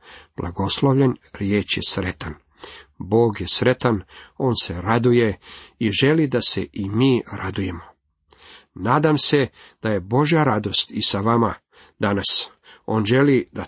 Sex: male